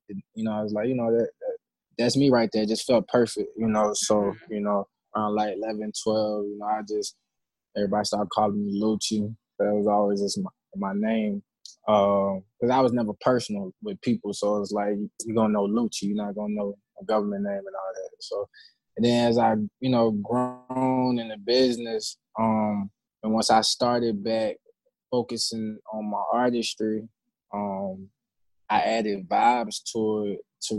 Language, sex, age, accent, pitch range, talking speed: English, male, 20-39, American, 105-120 Hz, 190 wpm